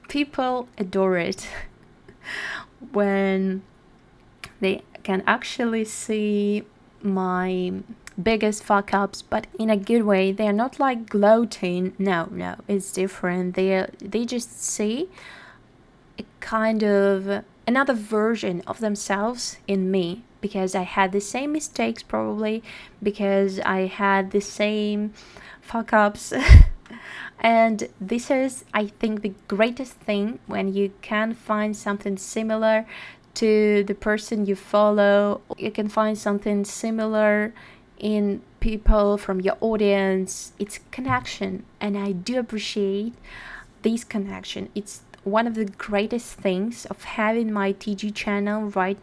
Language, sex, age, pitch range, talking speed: Russian, female, 20-39, 195-220 Hz, 125 wpm